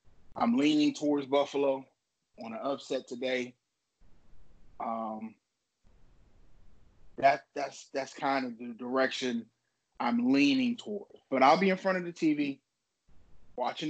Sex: male